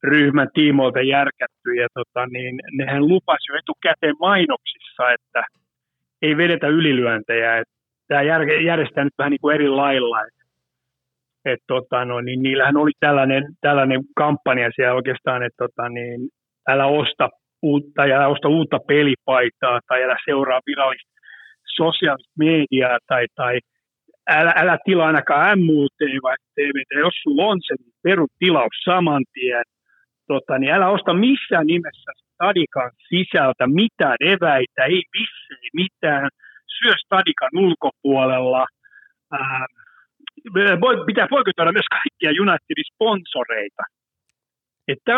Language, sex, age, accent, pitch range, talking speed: Finnish, male, 60-79, native, 130-190 Hz, 120 wpm